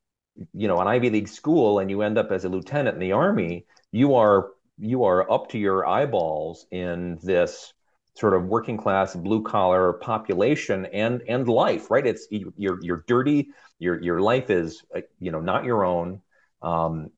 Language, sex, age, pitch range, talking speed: English, male, 40-59, 90-120 Hz, 180 wpm